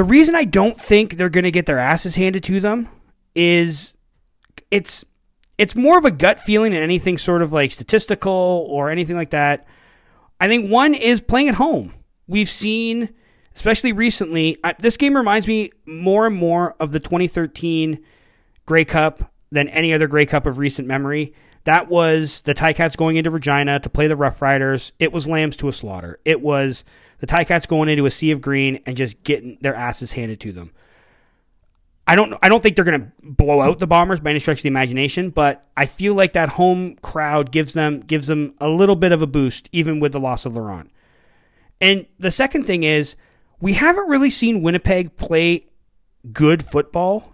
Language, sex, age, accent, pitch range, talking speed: English, male, 30-49, American, 145-190 Hz, 195 wpm